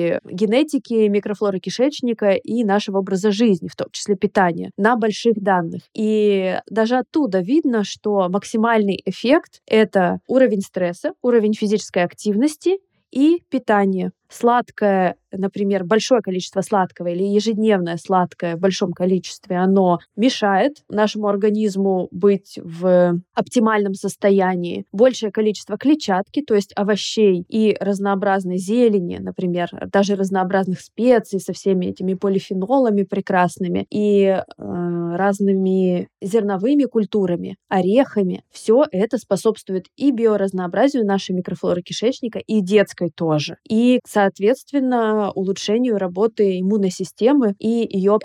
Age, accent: 20-39, native